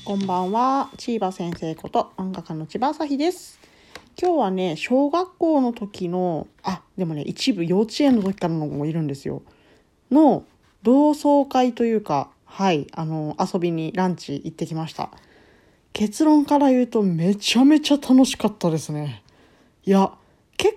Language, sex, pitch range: Japanese, female, 165-255 Hz